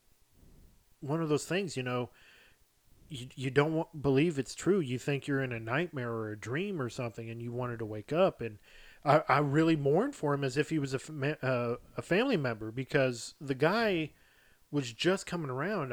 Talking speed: 190 wpm